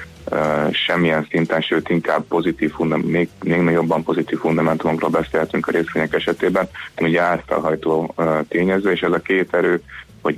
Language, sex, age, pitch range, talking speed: Hungarian, male, 20-39, 80-90 Hz, 145 wpm